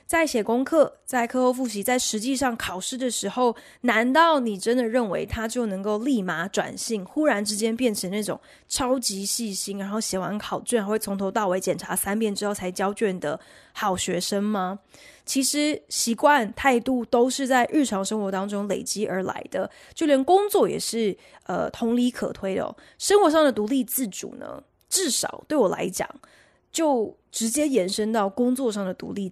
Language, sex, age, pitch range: Chinese, female, 20-39, 200-265 Hz